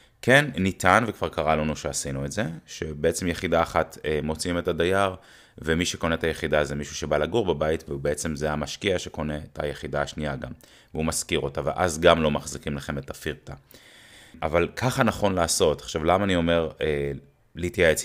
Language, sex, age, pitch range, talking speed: Hebrew, male, 20-39, 75-90 Hz, 170 wpm